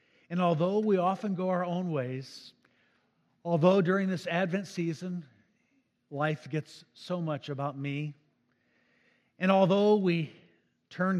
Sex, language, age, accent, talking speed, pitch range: male, English, 50-69, American, 125 wpm, 140-190 Hz